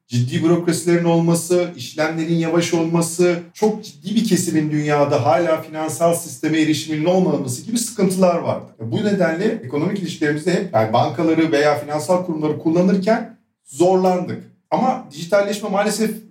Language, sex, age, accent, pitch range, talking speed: Turkish, male, 50-69, native, 130-185 Hz, 120 wpm